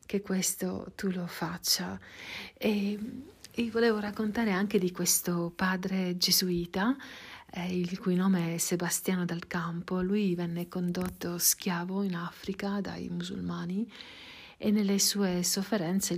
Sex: female